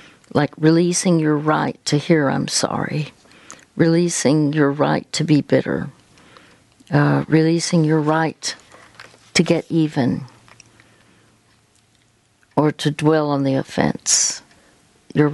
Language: English